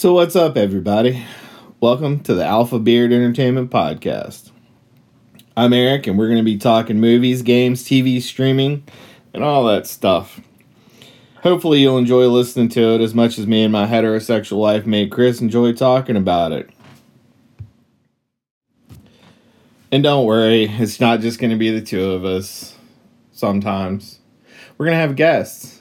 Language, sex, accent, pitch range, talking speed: English, male, American, 105-125 Hz, 155 wpm